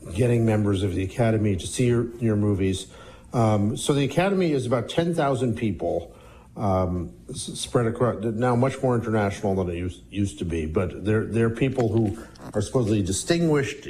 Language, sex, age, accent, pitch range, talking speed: English, male, 50-69, American, 95-115 Hz, 175 wpm